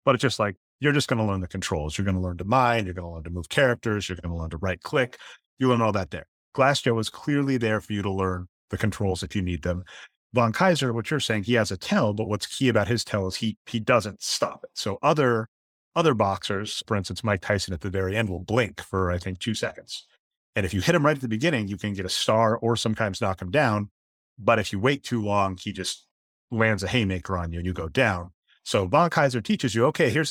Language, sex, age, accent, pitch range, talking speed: English, male, 30-49, American, 95-125 Hz, 265 wpm